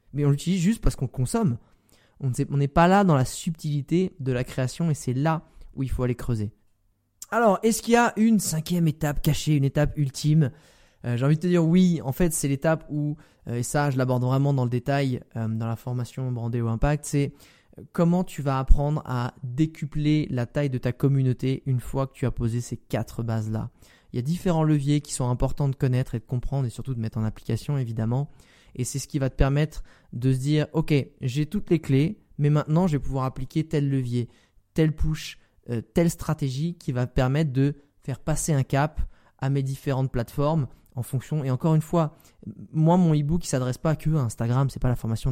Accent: French